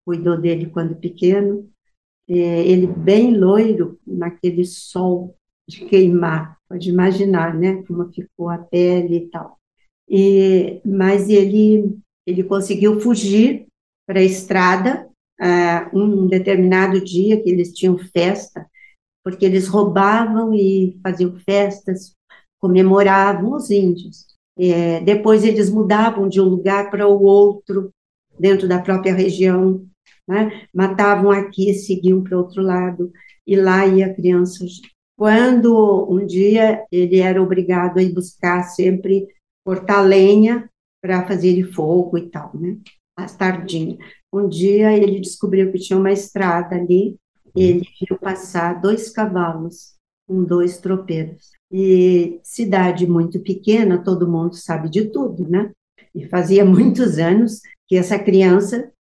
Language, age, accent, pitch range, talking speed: Portuguese, 50-69, Brazilian, 180-200 Hz, 125 wpm